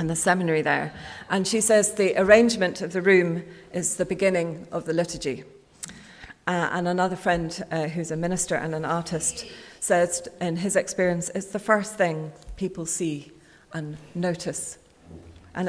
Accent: British